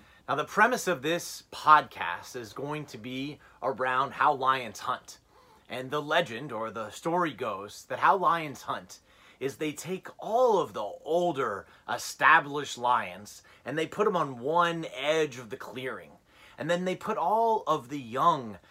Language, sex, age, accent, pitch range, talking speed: English, male, 30-49, American, 135-185 Hz, 165 wpm